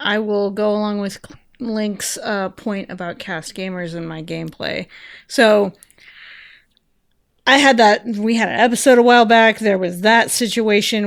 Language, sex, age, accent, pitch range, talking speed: English, female, 30-49, American, 185-230 Hz, 155 wpm